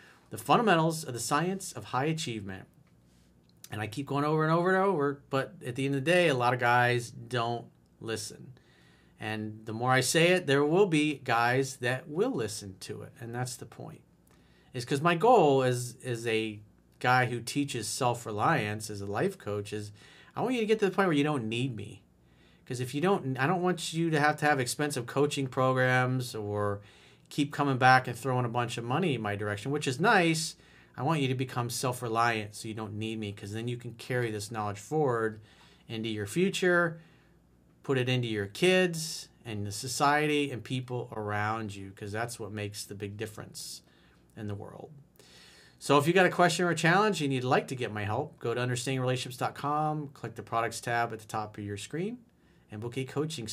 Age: 40-59